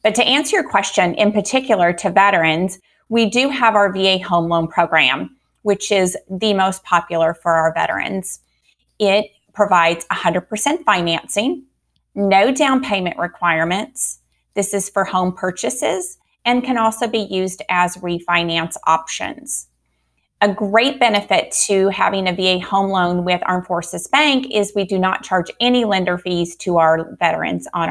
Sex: female